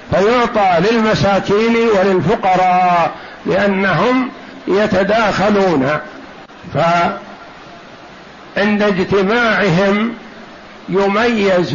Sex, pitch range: male, 185-225 Hz